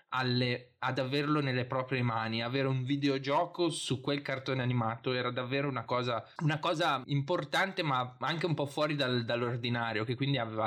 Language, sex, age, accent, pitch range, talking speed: Italian, male, 20-39, native, 120-140 Hz, 150 wpm